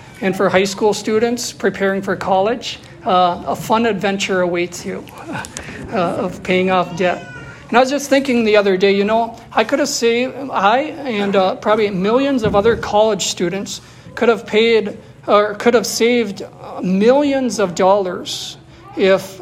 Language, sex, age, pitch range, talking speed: English, male, 50-69, 190-225 Hz, 165 wpm